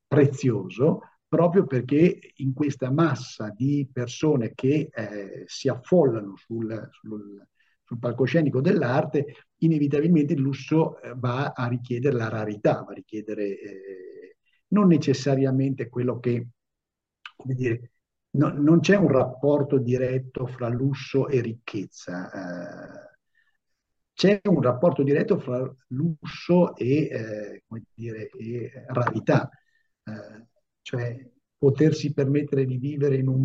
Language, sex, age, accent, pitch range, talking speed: Italian, male, 50-69, native, 120-155 Hz, 115 wpm